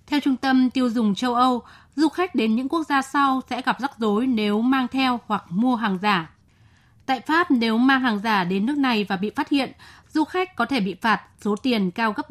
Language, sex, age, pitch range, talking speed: Vietnamese, female, 20-39, 210-260 Hz, 235 wpm